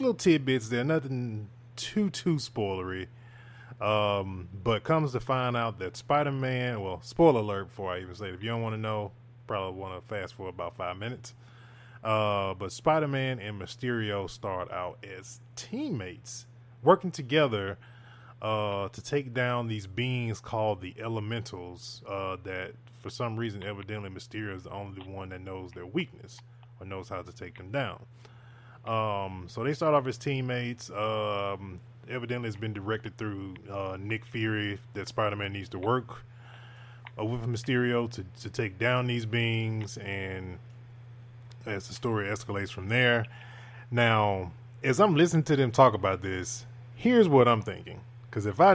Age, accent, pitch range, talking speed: 20-39, American, 100-125 Hz, 165 wpm